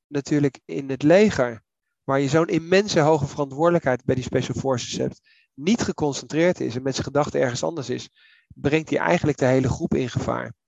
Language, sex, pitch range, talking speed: Dutch, male, 135-160 Hz, 185 wpm